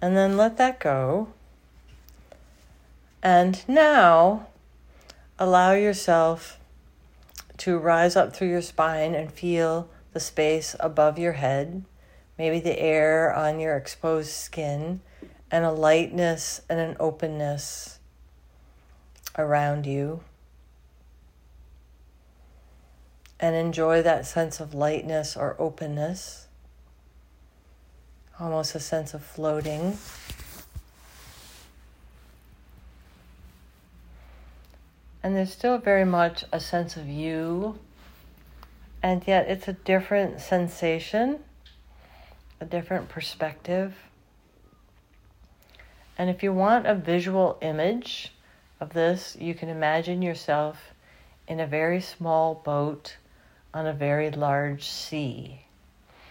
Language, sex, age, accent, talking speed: English, female, 40-59, American, 95 wpm